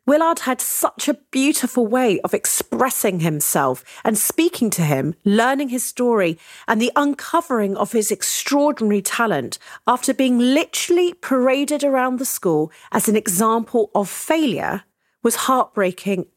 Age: 40-59